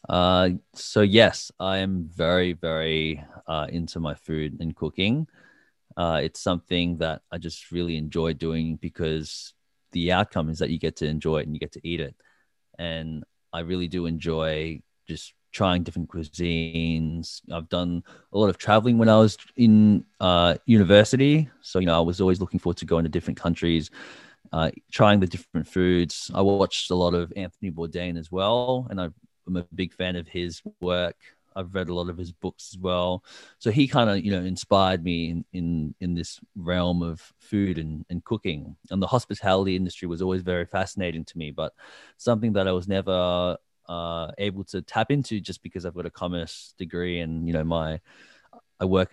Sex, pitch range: male, 85-95 Hz